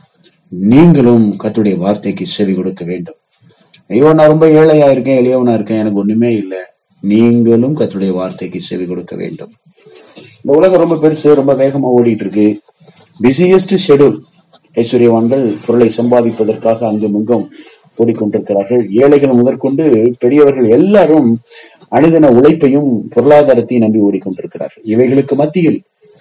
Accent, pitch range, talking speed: native, 105-145 Hz, 110 wpm